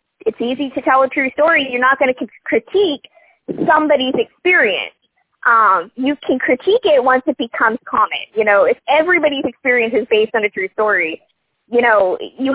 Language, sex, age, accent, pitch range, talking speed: English, female, 20-39, American, 225-315 Hz, 175 wpm